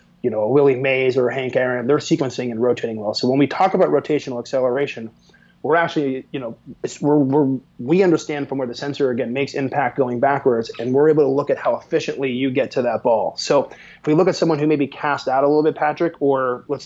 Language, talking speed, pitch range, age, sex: English, 240 wpm, 130-150 Hz, 30-49, male